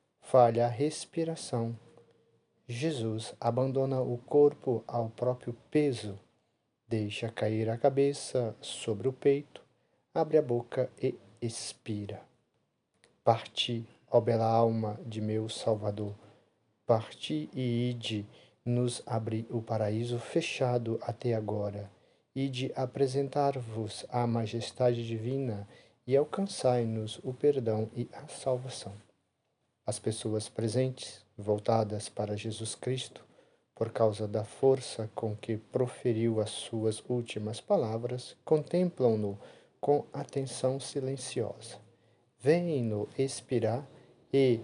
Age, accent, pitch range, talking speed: 40-59, Brazilian, 110-130 Hz, 100 wpm